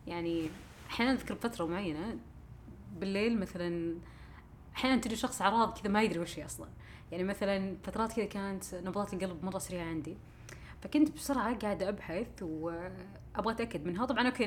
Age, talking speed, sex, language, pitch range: 20-39, 150 wpm, female, Arabic, 170-215 Hz